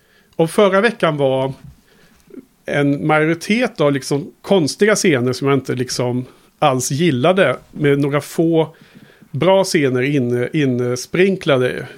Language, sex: Swedish, male